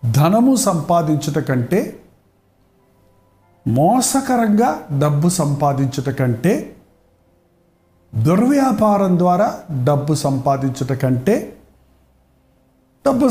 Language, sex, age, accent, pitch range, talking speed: Telugu, male, 50-69, native, 135-210 Hz, 60 wpm